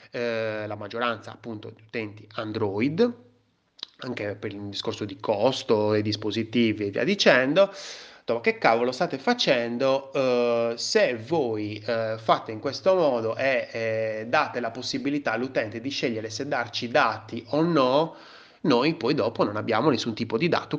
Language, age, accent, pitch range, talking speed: Italian, 30-49, native, 110-145 Hz, 155 wpm